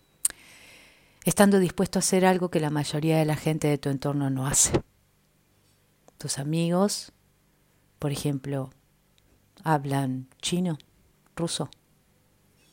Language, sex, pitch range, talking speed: Spanish, female, 140-180 Hz, 110 wpm